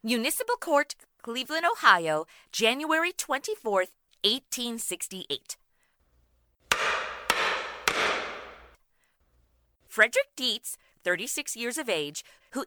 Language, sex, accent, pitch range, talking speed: English, female, American, 175-280 Hz, 65 wpm